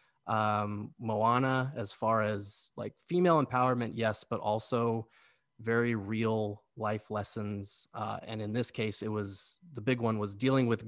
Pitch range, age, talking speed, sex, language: 105-130 Hz, 20-39, 155 wpm, male, English